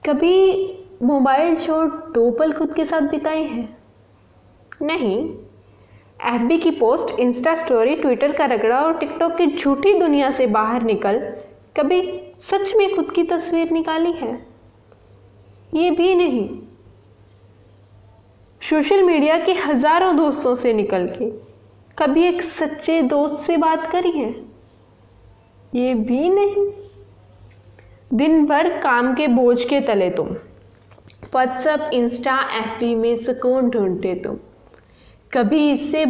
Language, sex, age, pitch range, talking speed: Hindi, female, 10-29, 210-330 Hz, 125 wpm